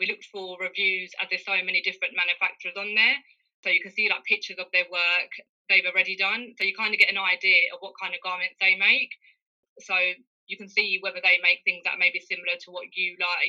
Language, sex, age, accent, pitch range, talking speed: English, female, 20-39, British, 180-200 Hz, 240 wpm